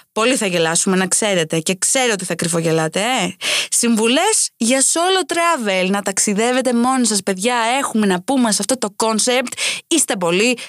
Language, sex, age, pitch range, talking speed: Greek, female, 20-39, 205-275 Hz, 165 wpm